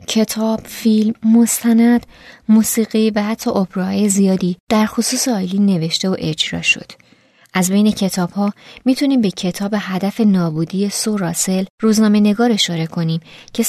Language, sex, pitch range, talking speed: Persian, female, 180-225 Hz, 125 wpm